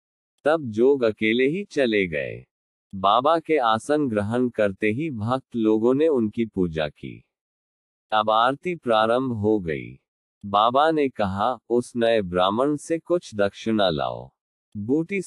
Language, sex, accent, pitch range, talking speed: Hindi, male, native, 100-130 Hz, 135 wpm